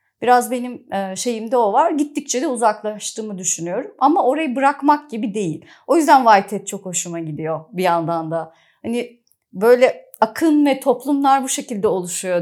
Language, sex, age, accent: Turkish, female, 30-49, native